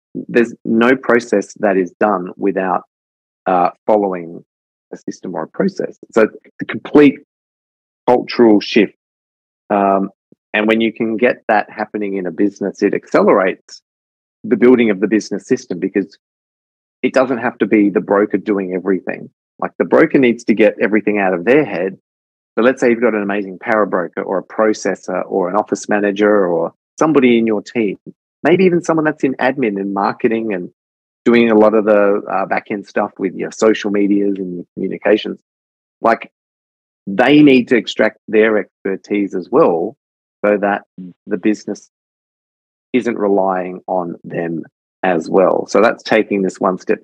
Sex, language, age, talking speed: male, English, 30-49, 165 wpm